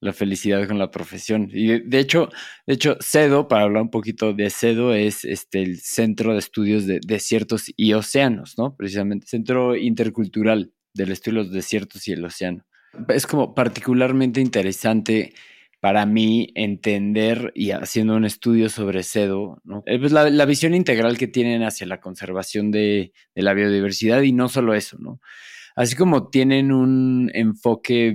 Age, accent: 20-39, Mexican